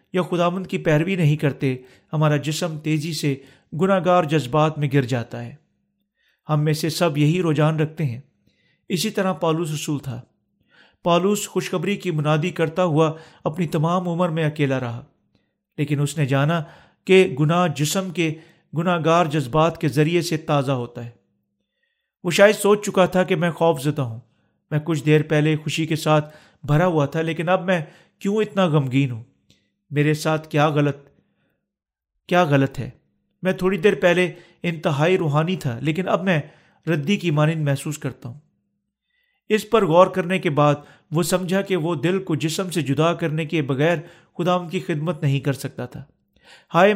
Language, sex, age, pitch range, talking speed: Urdu, male, 40-59, 150-180 Hz, 175 wpm